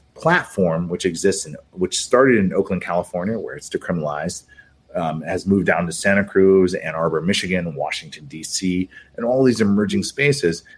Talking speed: 160 wpm